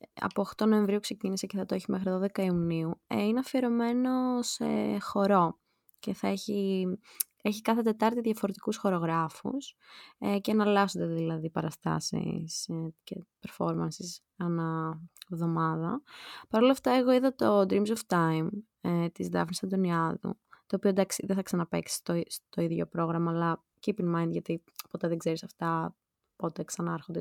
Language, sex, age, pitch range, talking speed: Greek, female, 20-39, 170-205 Hz, 150 wpm